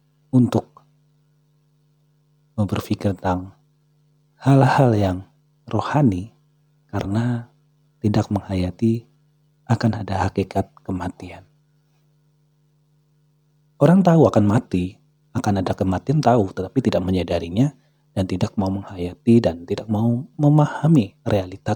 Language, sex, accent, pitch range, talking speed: Indonesian, male, native, 100-150 Hz, 90 wpm